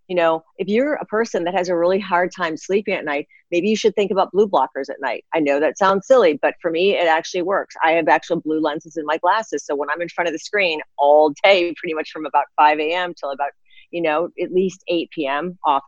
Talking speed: 250 wpm